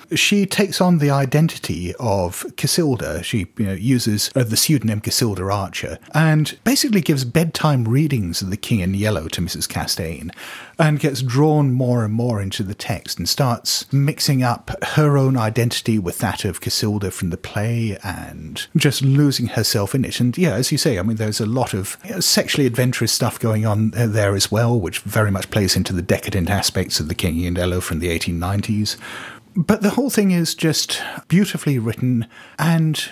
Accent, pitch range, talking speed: British, 100-145 Hz, 185 wpm